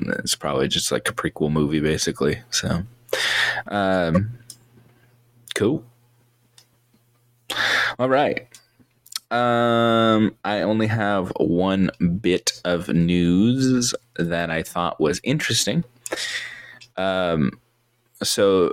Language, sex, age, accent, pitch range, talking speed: English, male, 20-39, American, 85-120 Hz, 90 wpm